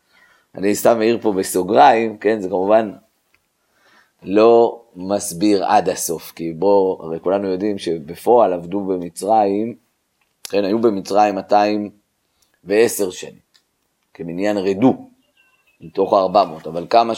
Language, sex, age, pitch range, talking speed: Hebrew, male, 30-49, 95-115 Hz, 110 wpm